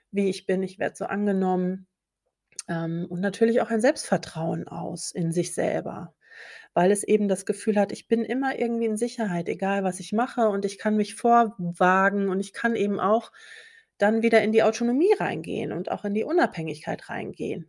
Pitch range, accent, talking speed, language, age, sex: 185-230 Hz, German, 185 wpm, German, 30-49, female